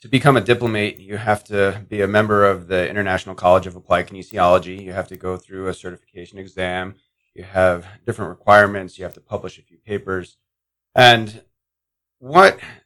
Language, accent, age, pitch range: English, American, 30-49, 95-115 Hz